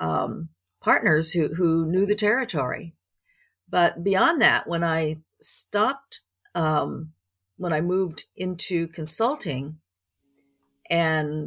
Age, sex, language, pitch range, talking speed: 50-69, female, English, 150-185 Hz, 105 wpm